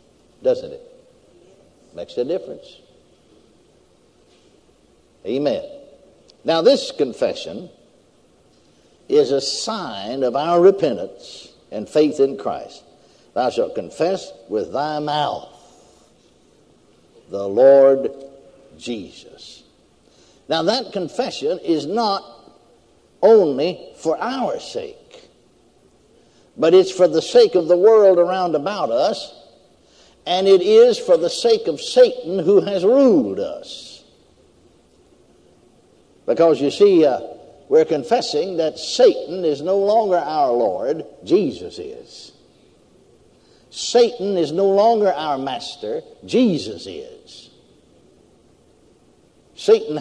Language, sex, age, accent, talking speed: English, male, 60-79, American, 100 wpm